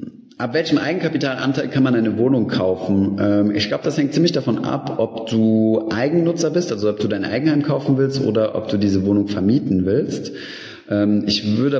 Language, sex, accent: German, male, German